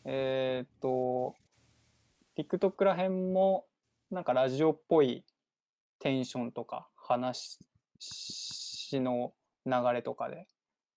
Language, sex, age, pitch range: Japanese, male, 20-39, 125-185 Hz